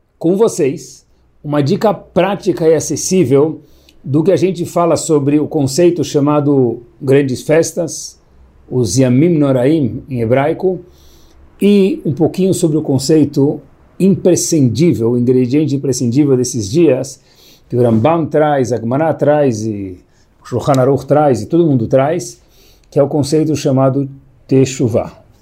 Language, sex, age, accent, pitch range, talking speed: Portuguese, male, 60-79, Brazilian, 120-160 Hz, 125 wpm